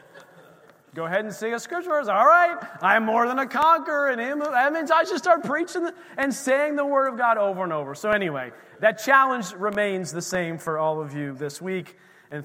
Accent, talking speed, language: American, 210 wpm, English